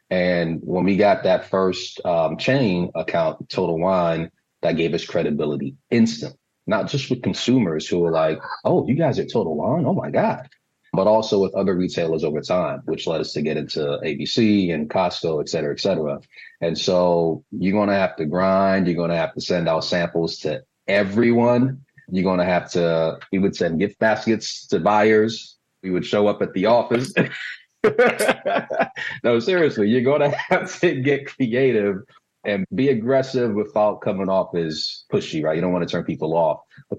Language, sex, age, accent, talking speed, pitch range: English, male, 30-49, American, 180 wpm, 85-110 Hz